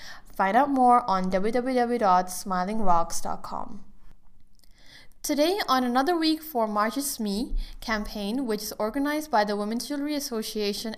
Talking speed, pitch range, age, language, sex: 120 wpm, 200-245 Hz, 20-39, English, female